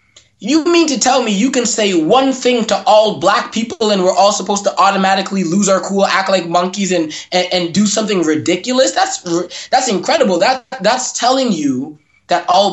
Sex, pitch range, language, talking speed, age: male, 160-215 Hz, English, 195 wpm, 20-39